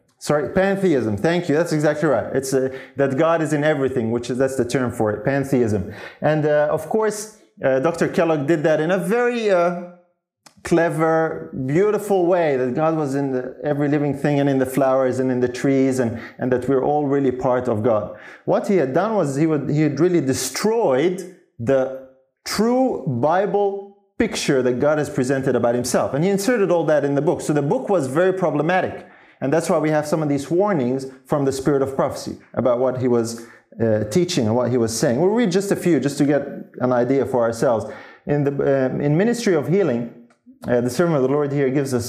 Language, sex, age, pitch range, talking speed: English, male, 30-49, 130-175 Hz, 210 wpm